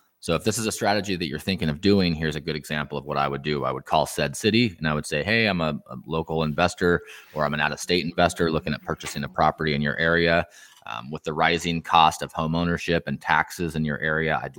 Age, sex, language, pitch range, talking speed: 20-39, male, English, 75-85 Hz, 255 wpm